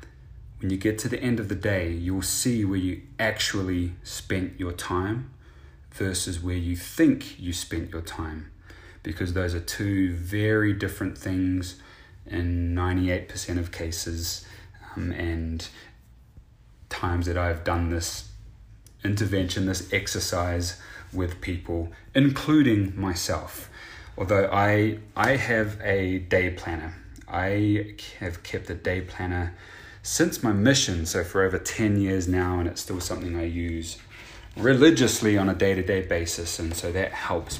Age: 30-49